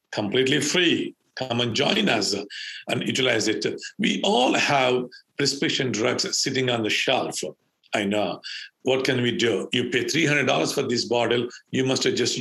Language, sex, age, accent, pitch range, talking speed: English, male, 50-69, Indian, 130-155 Hz, 165 wpm